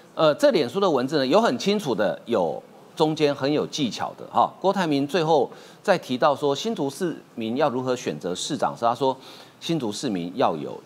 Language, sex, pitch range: Chinese, male, 130-200 Hz